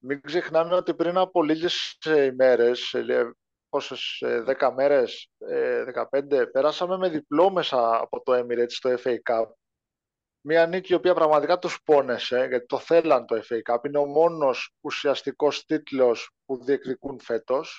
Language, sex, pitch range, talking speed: Greek, male, 135-185 Hz, 140 wpm